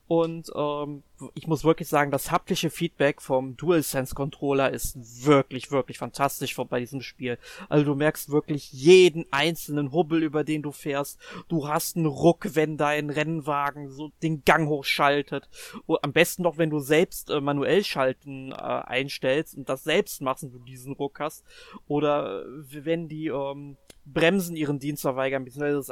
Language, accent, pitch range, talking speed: German, German, 140-175 Hz, 165 wpm